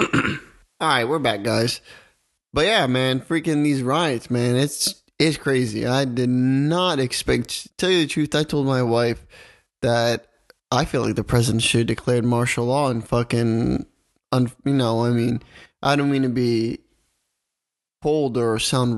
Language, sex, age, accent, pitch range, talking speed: English, male, 20-39, American, 125-155 Hz, 170 wpm